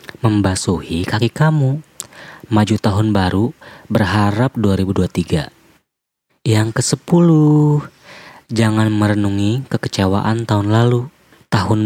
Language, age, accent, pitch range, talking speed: English, 20-39, Indonesian, 95-120 Hz, 85 wpm